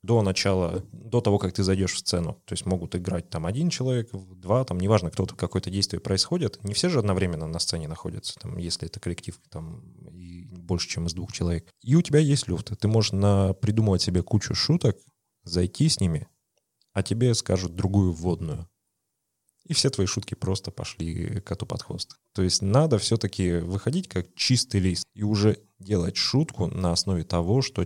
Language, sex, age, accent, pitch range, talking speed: Russian, male, 20-39, native, 90-115 Hz, 185 wpm